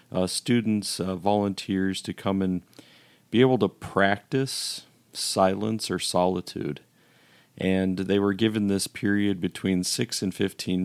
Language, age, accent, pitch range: English, 40-59, American, 90-105 Hz